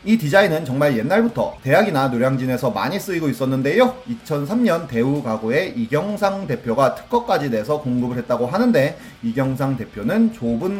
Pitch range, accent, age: 130-215 Hz, native, 30-49